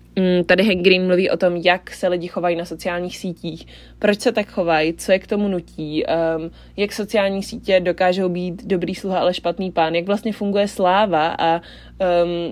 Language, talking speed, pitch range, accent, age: Czech, 185 wpm, 170-200 Hz, native, 20-39